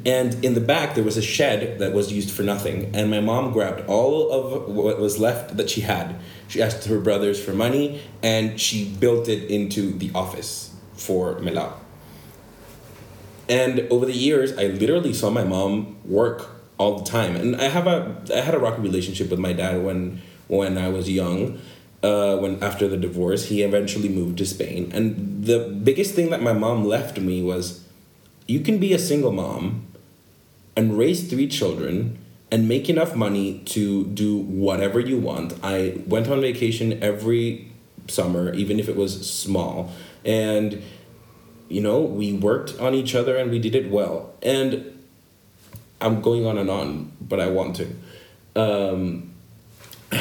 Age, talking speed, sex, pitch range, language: 30-49, 175 wpm, male, 95-120 Hz, English